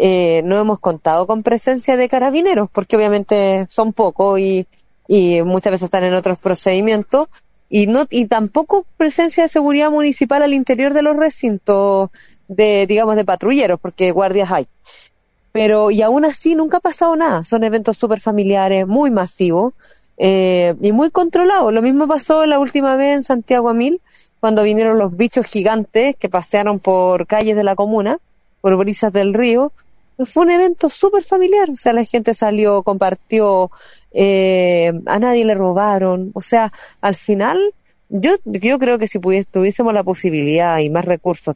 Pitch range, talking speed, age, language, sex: 185-245 Hz, 165 wpm, 30-49, Spanish, female